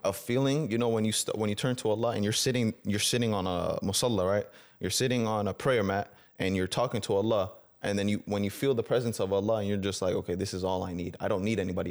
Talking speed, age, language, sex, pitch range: 280 wpm, 20-39, English, male, 105-140 Hz